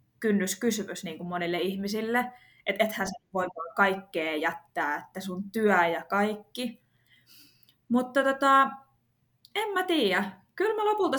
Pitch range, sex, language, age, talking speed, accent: 185-240 Hz, female, Finnish, 20-39, 130 wpm, native